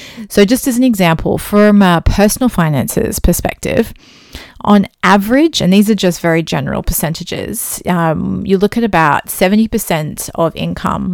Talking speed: 145 wpm